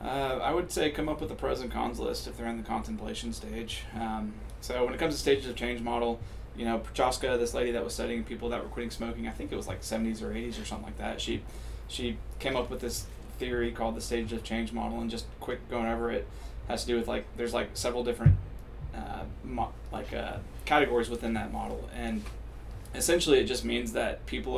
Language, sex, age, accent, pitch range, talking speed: English, male, 20-39, American, 110-120 Hz, 235 wpm